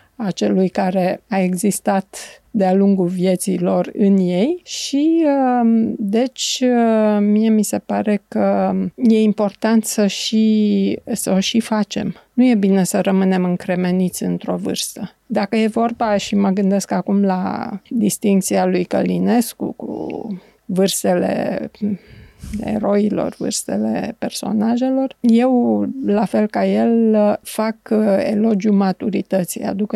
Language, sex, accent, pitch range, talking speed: Romanian, female, native, 190-220 Hz, 120 wpm